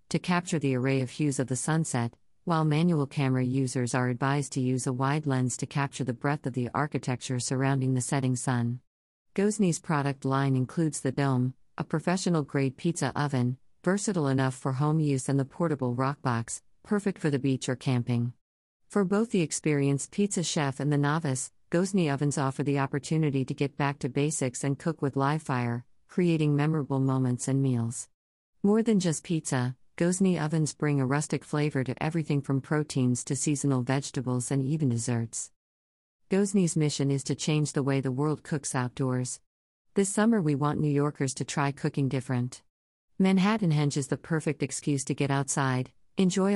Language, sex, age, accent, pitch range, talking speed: English, female, 50-69, American, 130-155 Hz, 175 wpm